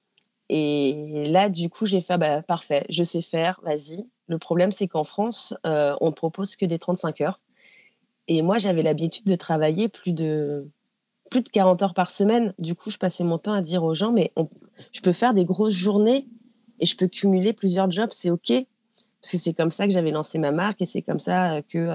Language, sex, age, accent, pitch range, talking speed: French, female, 30-49, French, 160-210 Hz, 230 wpm